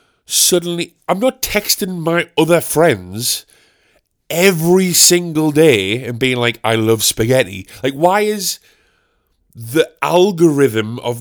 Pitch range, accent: 120-170 Hz, British